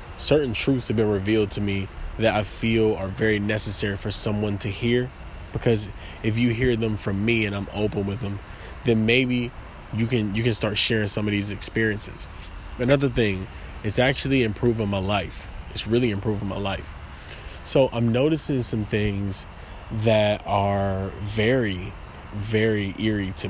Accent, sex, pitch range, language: American, male, 95-115 Hz, English